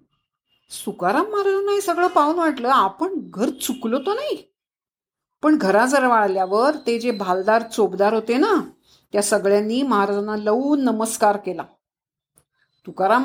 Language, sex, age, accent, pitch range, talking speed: Marathi, female, 50-69, native, 225-315 Hz, 120 wpm